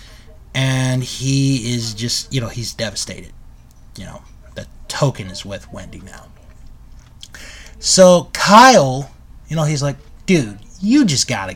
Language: English